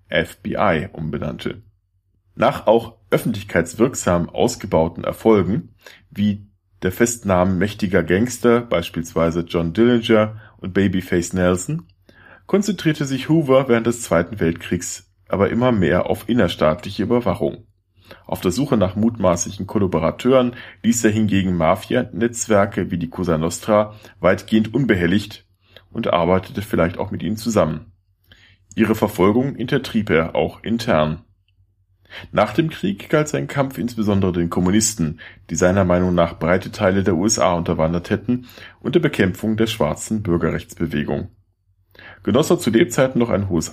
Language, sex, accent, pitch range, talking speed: German, male, German, 90-115 Hz, 125 wpm